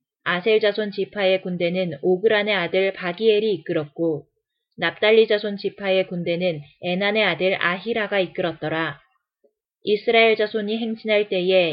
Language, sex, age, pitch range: Korean, female, 20-39, 180-220 Hz